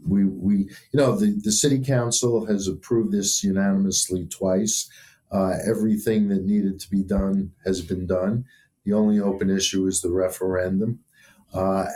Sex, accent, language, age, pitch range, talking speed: male, American, English, 50-69, 100-120 Hz, 155 wpm